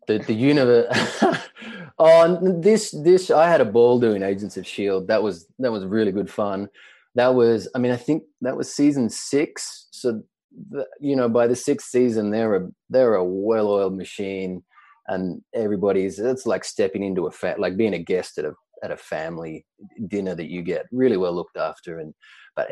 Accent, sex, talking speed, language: Australian, male, 195 wpm, English